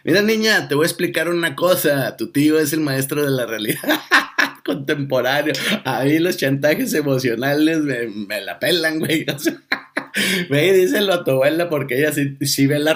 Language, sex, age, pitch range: Spanish, male, 50-69, 125-160 Hz